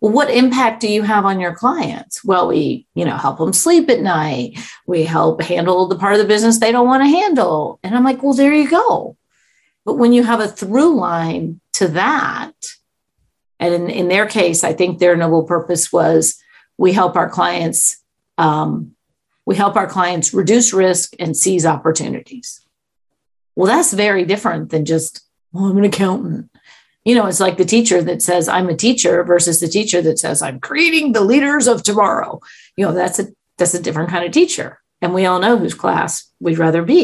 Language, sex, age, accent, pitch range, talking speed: English, female, 40-59, American, 170-225 Hz, 200 wpm